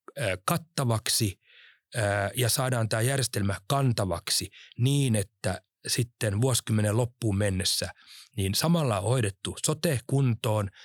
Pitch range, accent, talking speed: 100-135 Hz, native, 100 wpm